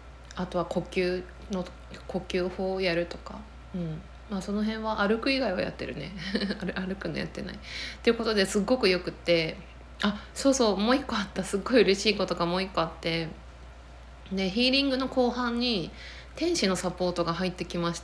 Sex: female